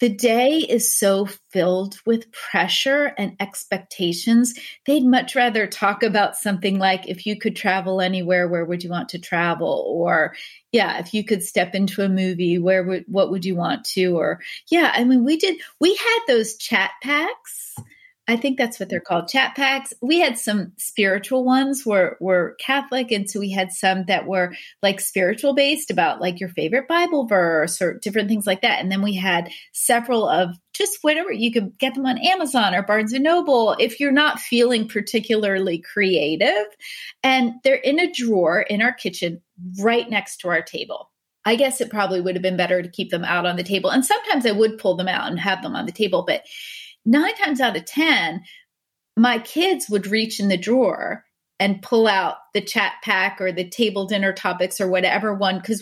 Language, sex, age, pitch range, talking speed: English, female, 30-49, 190-260 Hz, 195 wpm